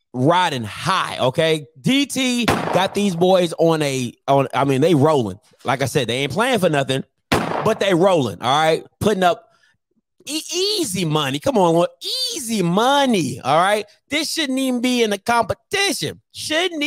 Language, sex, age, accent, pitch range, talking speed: English, male, 30-49, American, 160-245 Hz, 165 wpm